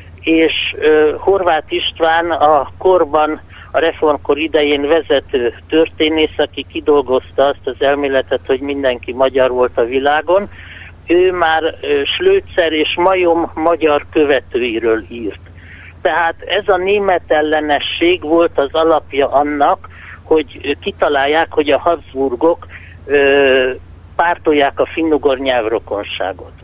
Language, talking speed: Hungarian, 110 wpm